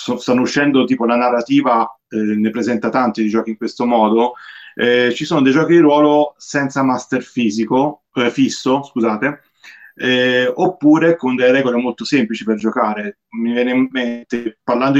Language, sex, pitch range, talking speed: Italian, male, 115-145 Hz, 165 wpm